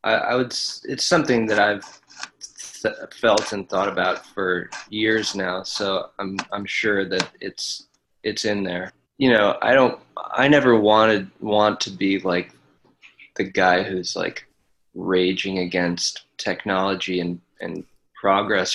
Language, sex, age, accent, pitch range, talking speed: English, male, 20-39, American, 95-110 Hz, 140 wpm